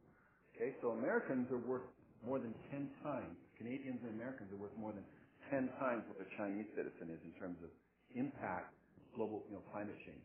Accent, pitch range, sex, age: American, 85-125 Hz, male, 50-69